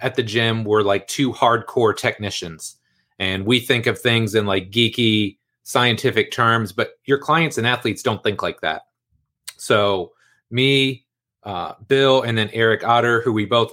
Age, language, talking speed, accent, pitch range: 30-49, English, 165 wpm, American, 115-135 Hz